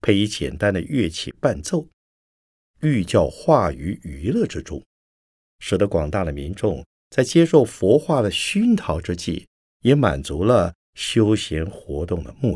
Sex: male